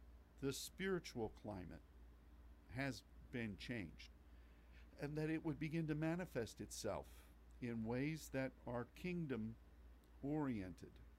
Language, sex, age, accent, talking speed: English, male, 50-69, American, 105 wpm